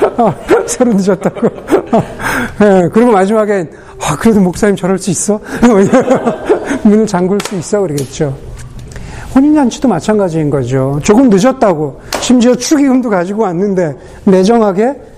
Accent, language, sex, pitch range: native, Korean, male, 175-245 Hz